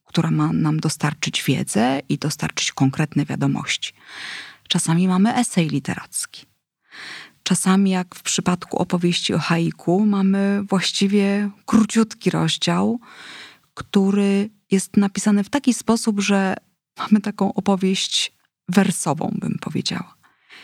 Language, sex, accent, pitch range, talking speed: Polish, female, native, 170-215 Hz, 110 wpm